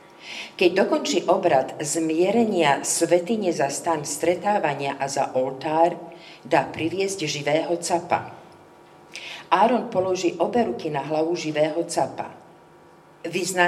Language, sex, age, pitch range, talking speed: Slovak, female, 50-69, 150-175 Hz, 105 wpm